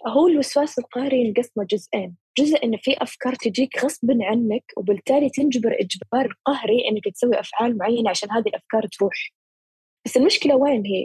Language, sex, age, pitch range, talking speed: Arabic, female, 10-29, 210-260 Hz, 150 wpm